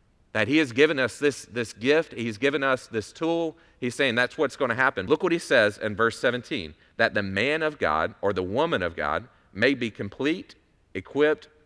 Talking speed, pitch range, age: 205 wpm, 100-140 Hz, 40-59